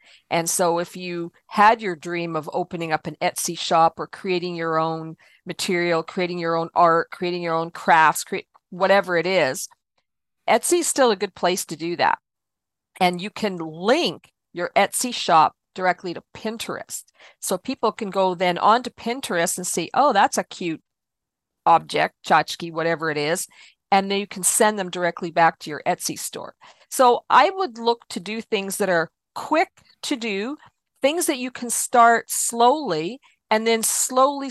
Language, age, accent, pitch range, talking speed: English, 50-69, American, 170-225 Hz, 175 wpm